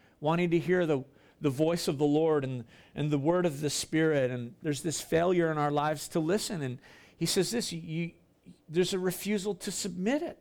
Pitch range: 165-220 Hz